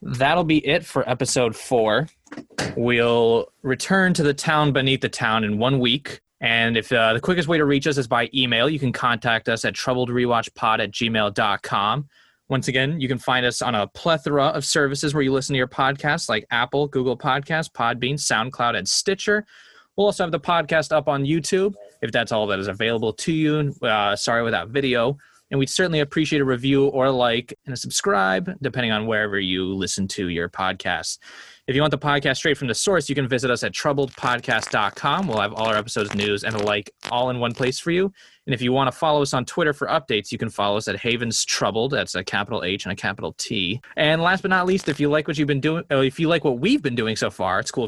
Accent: American